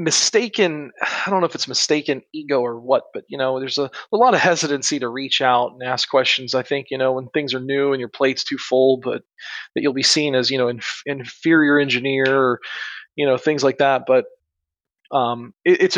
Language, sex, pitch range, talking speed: English, male, 135-175 Hz, 210 wpm